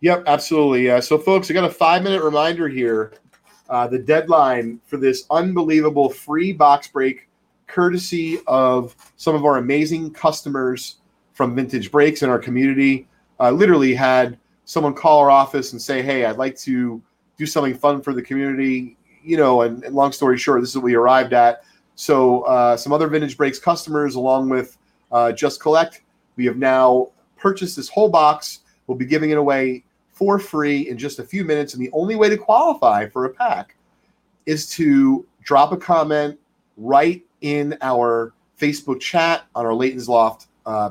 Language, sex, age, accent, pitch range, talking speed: English, male, 30-49, American, 125-165 Hz, 180 wpm